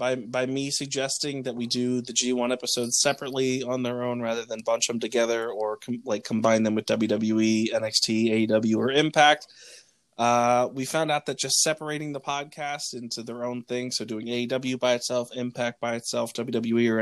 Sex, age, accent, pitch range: male, 20-39, American, 115-145 Hz